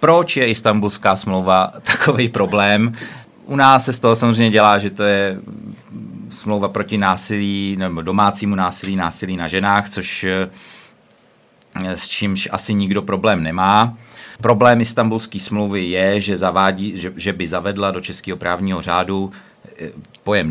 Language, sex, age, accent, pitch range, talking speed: Czech, male, 40-59, native, 95-110 Hz, 135 wpm